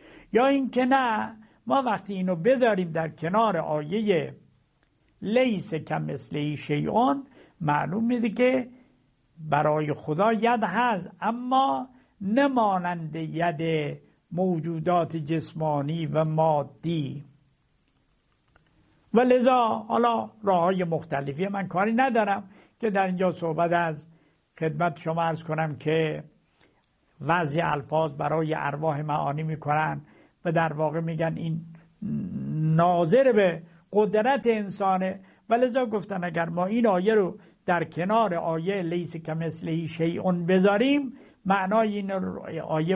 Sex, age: male, 60-79